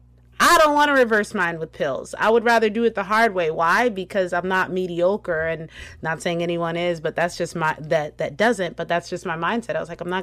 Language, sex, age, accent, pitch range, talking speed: English, female, 30-49, American, 165-210 Hz, 250 wpm